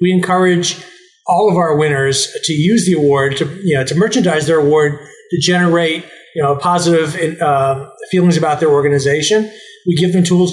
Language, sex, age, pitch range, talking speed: English, male, 40-59, 150-185 Hz, 175 wpm